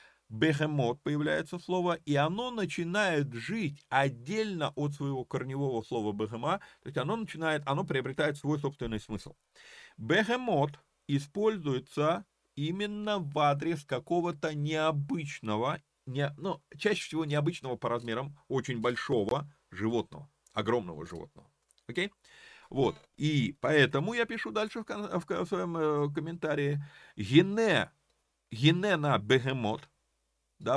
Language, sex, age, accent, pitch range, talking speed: Russian, male, 30-49, native, 125-175 Hz, 110 wpm